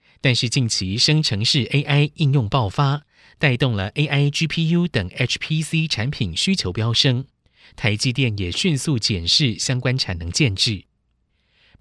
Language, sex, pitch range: Chinese, male, 105-145 Hz